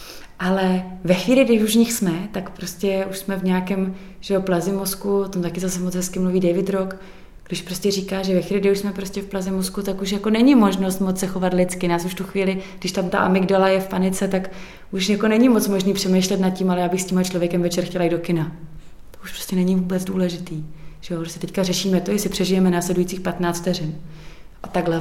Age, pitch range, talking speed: 30-49, 175-200 Hz, 235 wpm